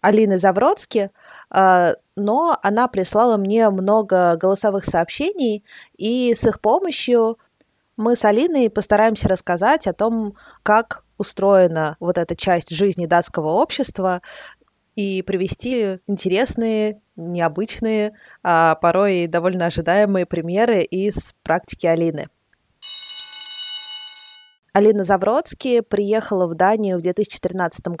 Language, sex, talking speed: Russian, female, 100 wpm